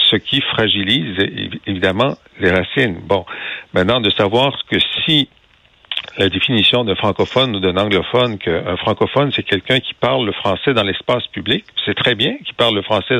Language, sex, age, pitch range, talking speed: French, male, 50-69, 95-120 Hz, 170 wpm